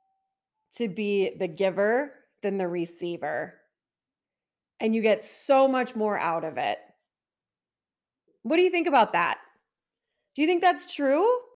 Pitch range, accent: 200-315 Hz, American